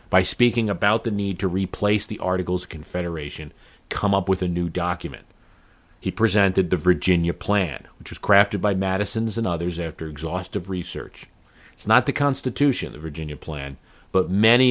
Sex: male